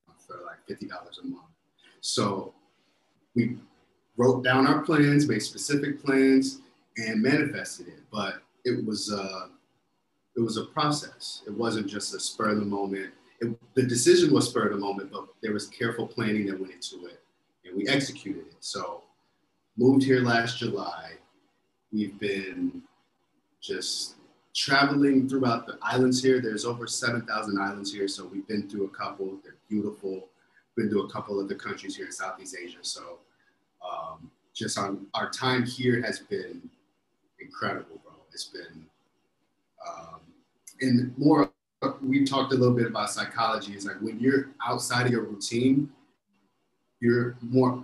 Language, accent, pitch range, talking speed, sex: English, American, 105-130 Hz, 150 wpm, male